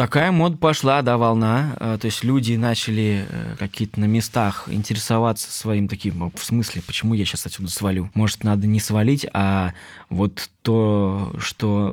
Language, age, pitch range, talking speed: Russian, 20-39, 100-115 Hz, 160 wpm